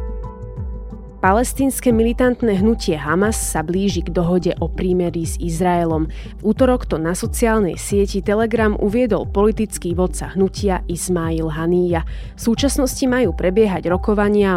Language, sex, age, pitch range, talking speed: Slovak, female, 20-39, 175-215 Hz, 125 wpm